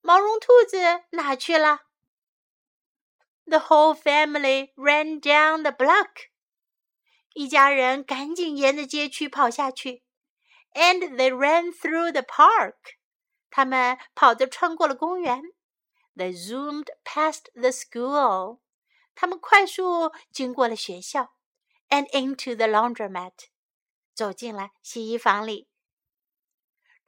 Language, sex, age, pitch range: Chinese, female, 60-79, 250-350 Hz